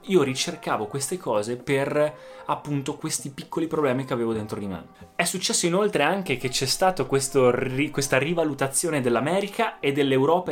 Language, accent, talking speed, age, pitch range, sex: Italian, native, 155 wpm, 20-39, 125-180 Hz, male